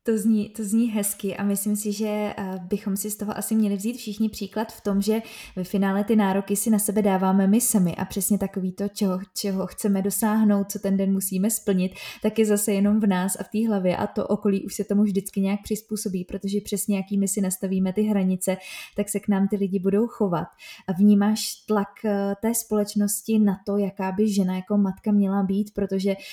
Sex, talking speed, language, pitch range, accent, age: female, 215 wpm, Czech, 195-215 Hz, native, 20-39